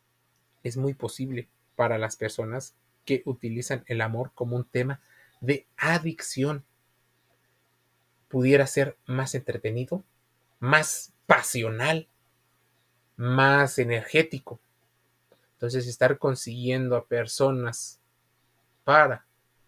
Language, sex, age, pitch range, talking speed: Spanish, male, 30-49, 120-150 Hz, 90 wpm